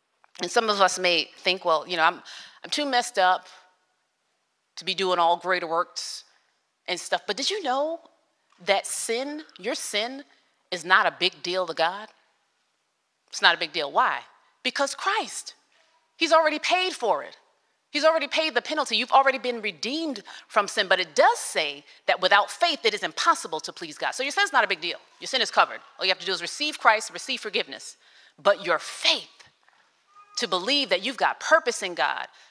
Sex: female